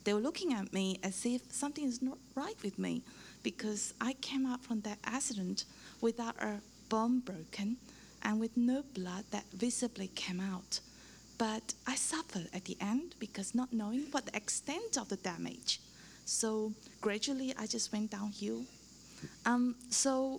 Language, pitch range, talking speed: English, 210-255 Hz, 160 wpm